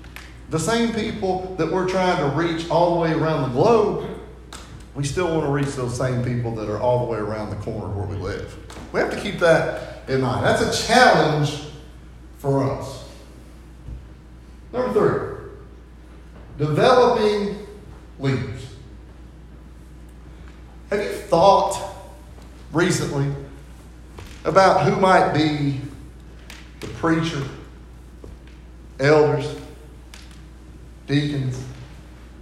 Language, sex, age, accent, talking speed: English, male, 40-59, American, 115 wpm